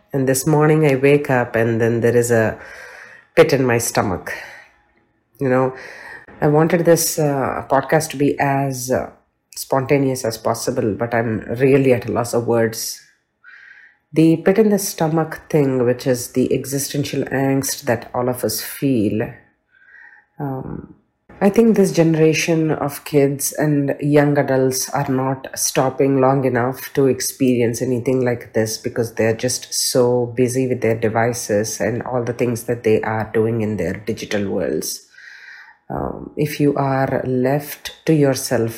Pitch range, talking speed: 115-145 Hz, 155 wpm